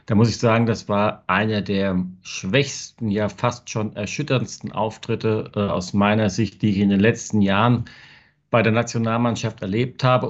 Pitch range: 105-130 Hz